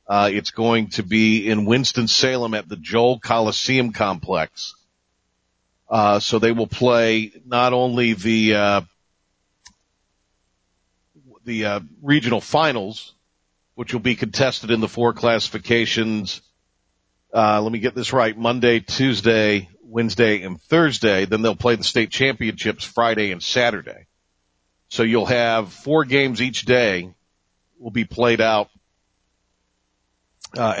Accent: American